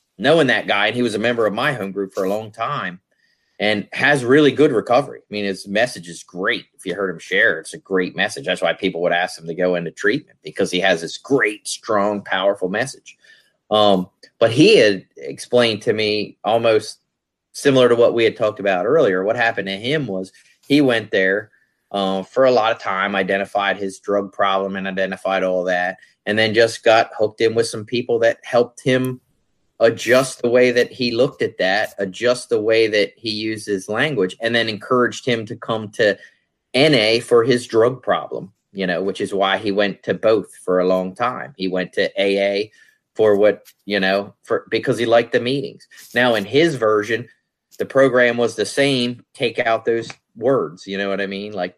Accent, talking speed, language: American, 205 wpm, English